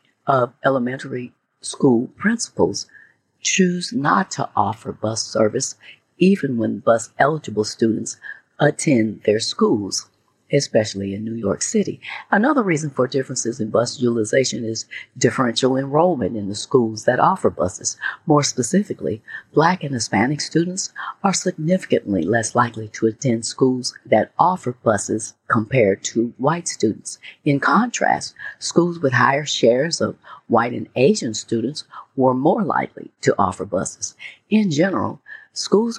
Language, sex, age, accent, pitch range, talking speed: English, female, 40-59, American, 115-165 Hz, 130 wpm